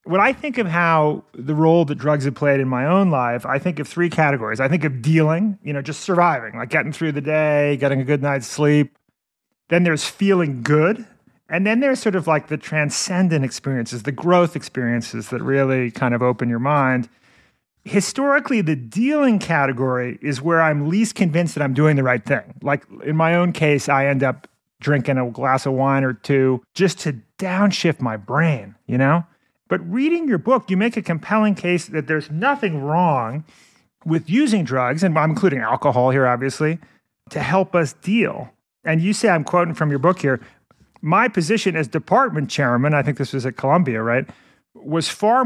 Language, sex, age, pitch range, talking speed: English, male, 30-49, 135-175 Hz, 195 wpm